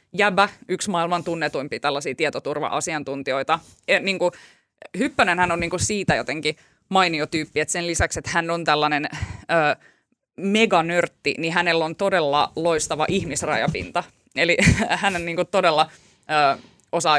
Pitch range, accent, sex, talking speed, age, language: 155-185 Hz, native, female, 135 wpm, 20-39, Finnish